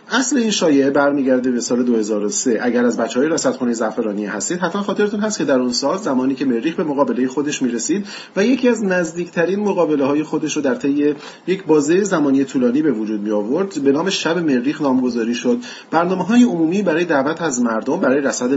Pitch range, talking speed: 120-185 Hz, 195 wpm